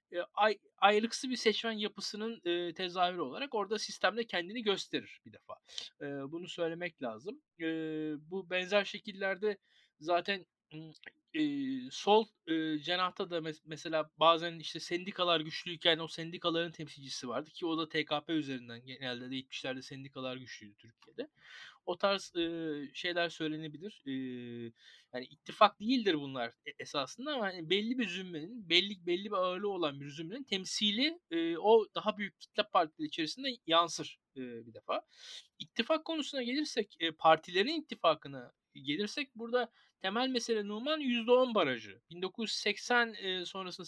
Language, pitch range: Turkish, 160-230 Hz